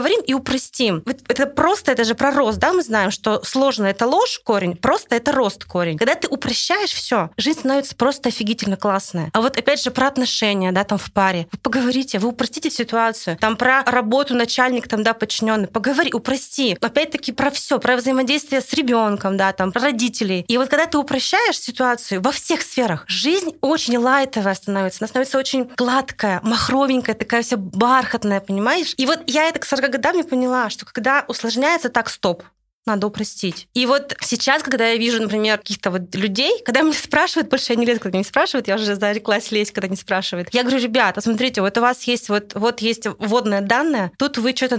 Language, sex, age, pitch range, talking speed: Russian, female, 20-39, 215-270 Hz, 200 wpm